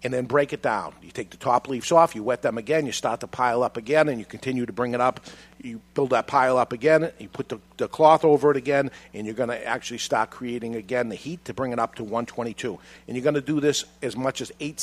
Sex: male